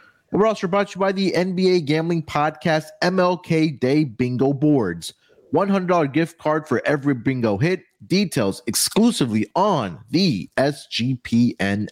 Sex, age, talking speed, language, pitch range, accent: male, 30-49, 130 wpm, English, 110-160 Hz, American